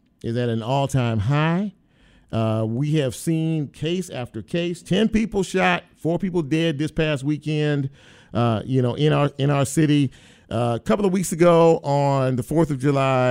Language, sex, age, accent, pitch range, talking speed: English, male, 50-69, American, 115-150 Hz, 180 wpm